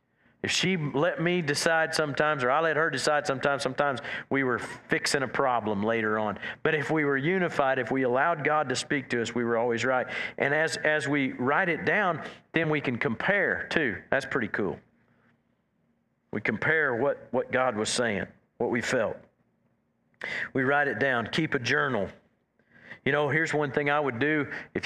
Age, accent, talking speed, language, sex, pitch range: 50-69, American, 190 wpm, English, male, 125-155 Hz